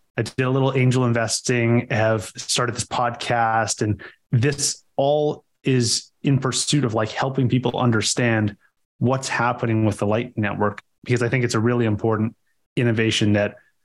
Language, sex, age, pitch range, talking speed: English, male, 30-49, 110-125 Hz, 155 wpm